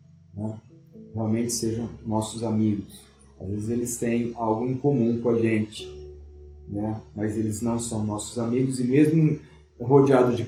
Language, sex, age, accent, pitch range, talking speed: Portuguese, male, 40-59, Brazilian, 110-135 Hz, 150 wpm